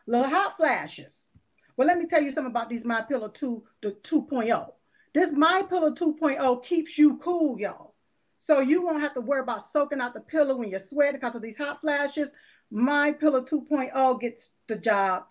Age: 40-59